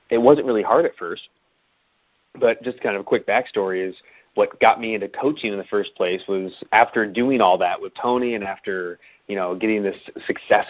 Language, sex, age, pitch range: English, male, 30-49, 95-115 Hz